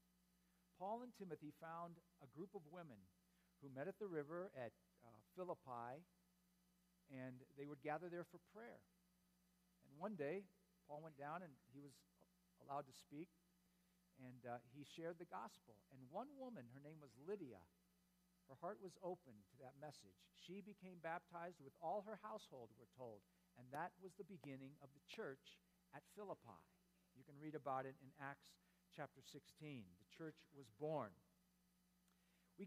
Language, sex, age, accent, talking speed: English, male, 50-69, American, 160 wpm